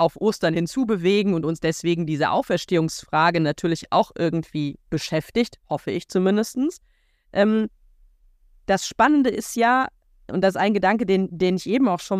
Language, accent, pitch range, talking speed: German, German, 170-220 Hz, 150 wpm